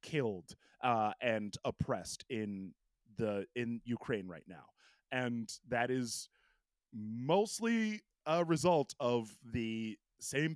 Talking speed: 110 wpm